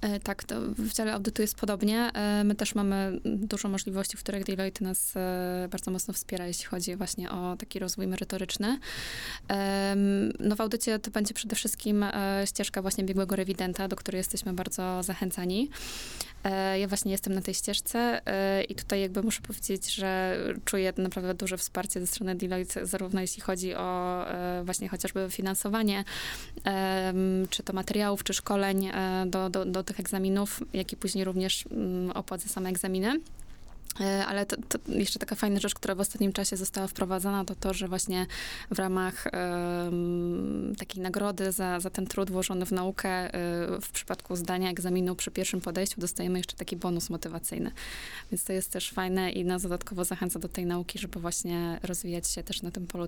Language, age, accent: Polish, 20-39, native